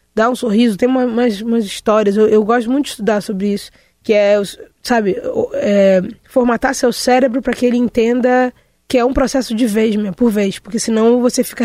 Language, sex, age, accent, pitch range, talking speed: Portuguese, female, 20-39, Brazilian, 200-245 Hz, 205 wpm